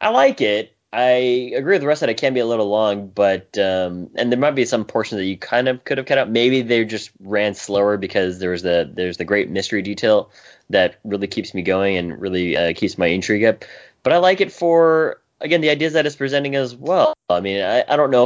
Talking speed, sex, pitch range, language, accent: 245 wpm, male, 90-120 Hz, English, American